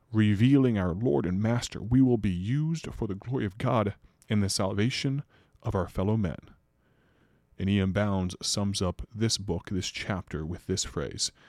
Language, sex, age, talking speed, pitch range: English, male, 30-49, 170 wpm, 85-105 Hz